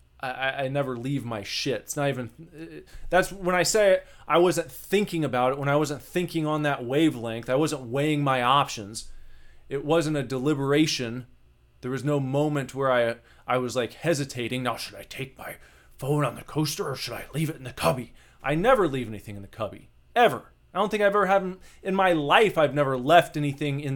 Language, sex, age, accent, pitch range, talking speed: English, male, 20-39, American, 105-145 Hz, 215 wpm